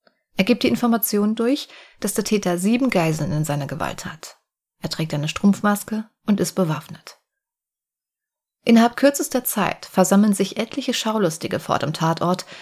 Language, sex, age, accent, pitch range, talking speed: German, female, 30-49, German, 170-220 Hz, 145 wpm